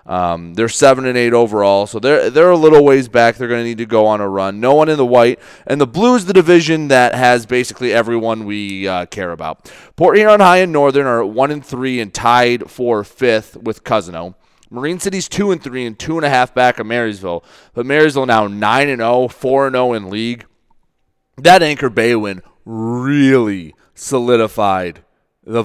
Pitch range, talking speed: 110-130 Hz, 195 wpm